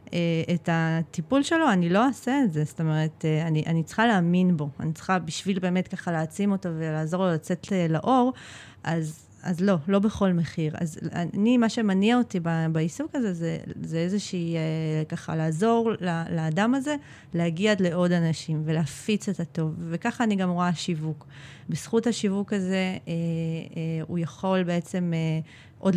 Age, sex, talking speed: 30-49, female, 150 wpm